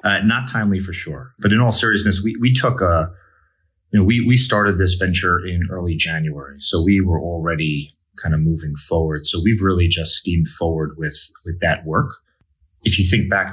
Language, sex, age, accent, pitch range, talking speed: English, male, 30-49, American, 80-100 Hz, 200 wpm